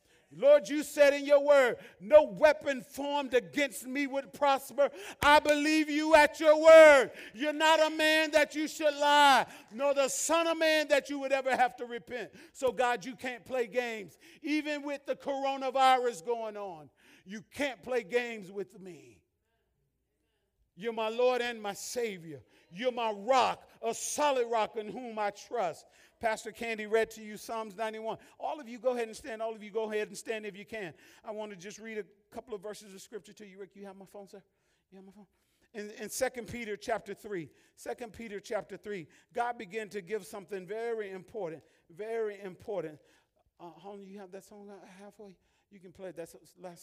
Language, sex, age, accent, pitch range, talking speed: English, male, 40-59, American, 200-265 Hz, 195 wpm